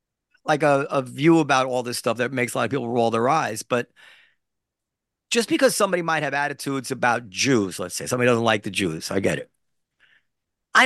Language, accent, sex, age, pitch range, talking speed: English, American, male, 40-59, 120-160 Hz, 205 wpm